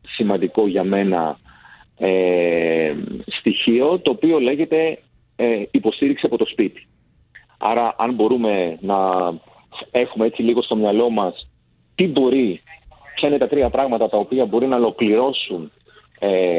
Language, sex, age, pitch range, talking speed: Greek, male, 40-59, 105-135 Hz, 130 wpm